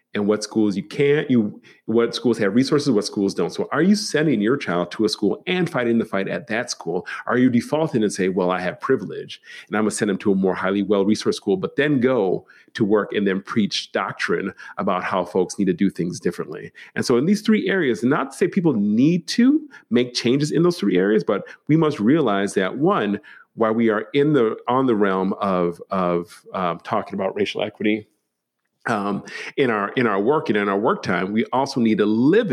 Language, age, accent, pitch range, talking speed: English, 40-59, American, 105-140 Hz, 230 wpm